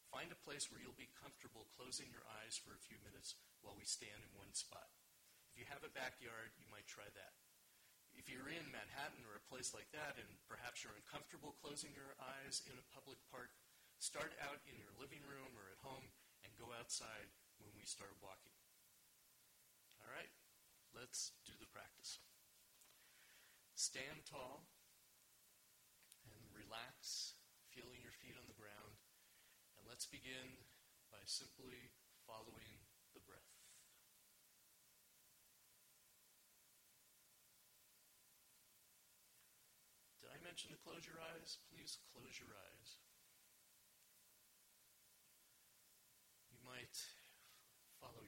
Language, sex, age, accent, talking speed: English, male, 40-59, American, 120 wpm